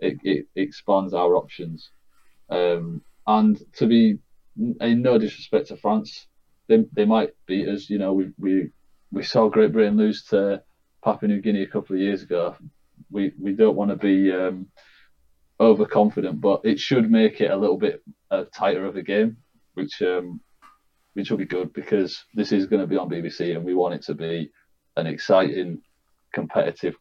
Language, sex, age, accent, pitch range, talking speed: English, male, 30-49, British, 75-105 Hz, 180 wpm